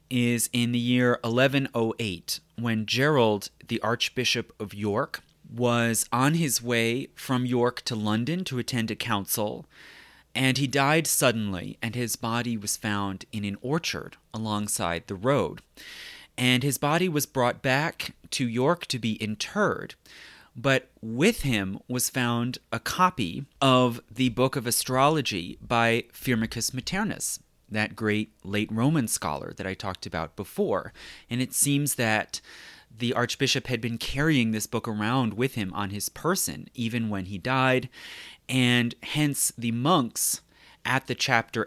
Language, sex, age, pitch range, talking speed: English, male, 30-49, 105-130 Hz, 145 wpm